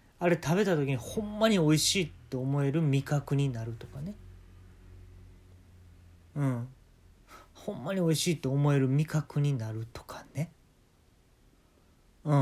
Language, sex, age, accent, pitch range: Japanese, male, 40-59, native, 115-185 Hz